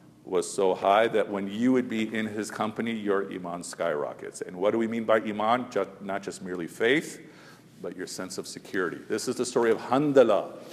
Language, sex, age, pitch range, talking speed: English, male, 50-69, 110-140 Hz, 200 wpm